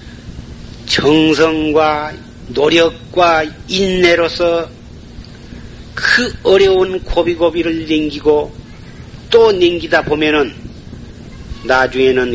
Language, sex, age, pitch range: Korean, male, 40-59, 130-170 Hz